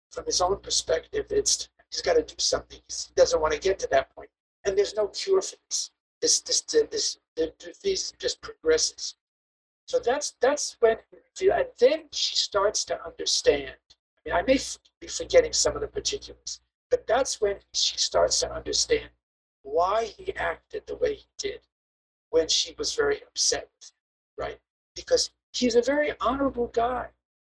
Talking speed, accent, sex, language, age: 165 wpm, American, male, English, 50-69